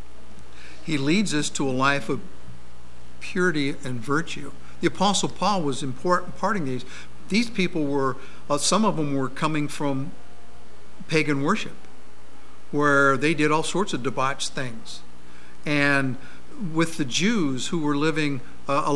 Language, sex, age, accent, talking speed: English, male, 60-79, American, 140 wpm